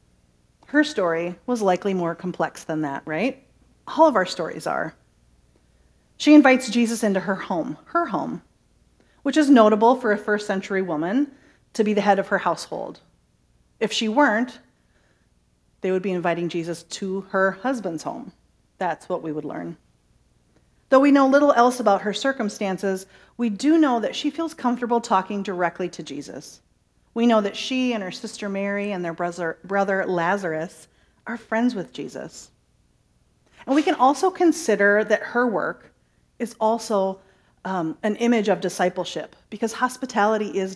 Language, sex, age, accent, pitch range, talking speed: English, female, 40-59, American, 180-240 Hz, 155 wpm